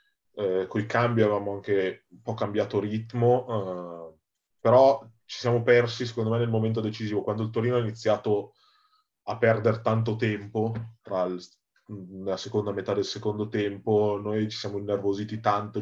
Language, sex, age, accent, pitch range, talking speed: Italian, male, 20-39, native, 105-120 Hz, 155 wpm